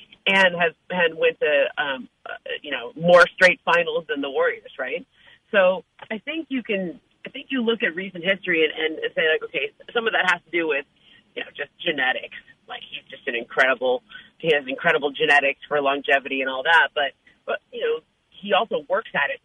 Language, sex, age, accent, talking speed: English, female, 40-59, American, 205 wpm